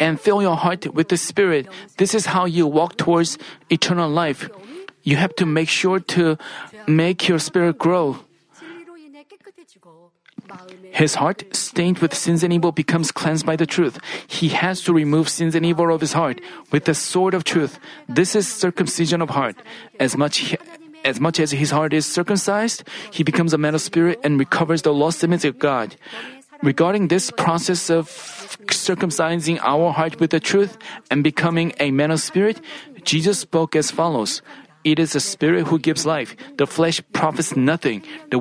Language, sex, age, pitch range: Korean, male, 40-59, 155-185 Hz